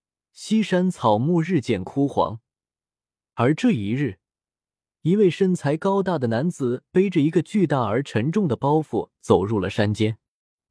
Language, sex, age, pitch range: Chinese, male, 20-39, 115-175 Hz